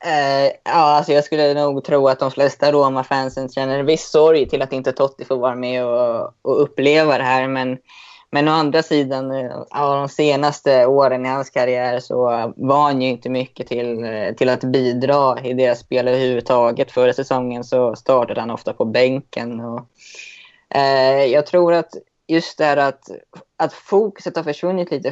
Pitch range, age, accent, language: 125-145 Hz, 20-39, native, Swedish